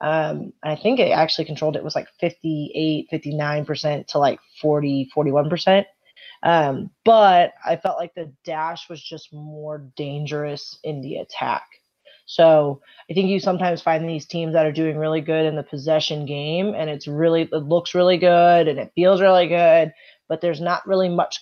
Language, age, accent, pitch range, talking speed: English, 20-39, American, 155-180 Hz, 175 wpm